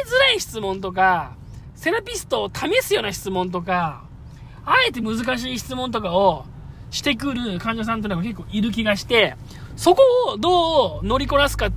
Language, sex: Japanese, male